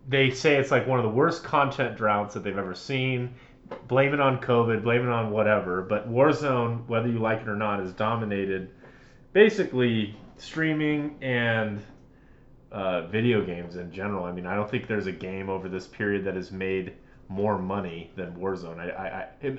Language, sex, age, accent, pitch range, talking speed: English, male, 30-49, American, 100-125 Hz, 180 wpm